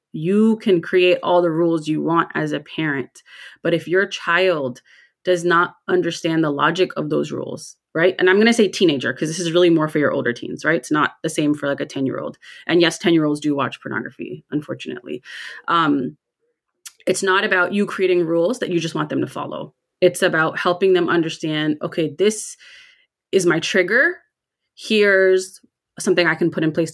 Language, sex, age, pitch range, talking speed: English, female, 30-49, 160-185 Hz, 190 wpm